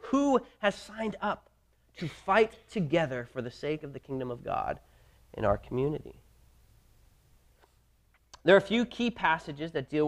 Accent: American